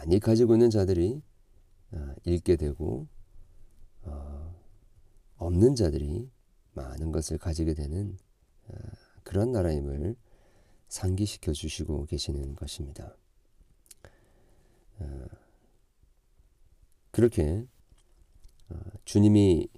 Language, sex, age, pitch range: Korean, male, 40-59, 80-100 Hz